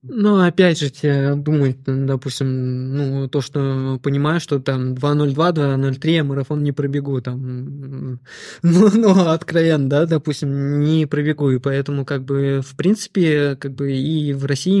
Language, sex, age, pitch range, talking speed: Russian, male, 20-39, 135-150 Hz, 140 wpm